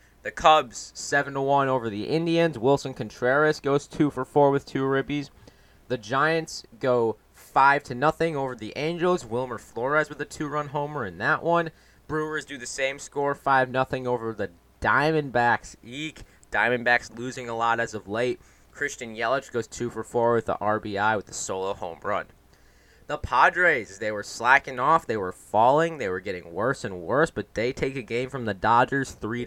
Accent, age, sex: American, 20-39, male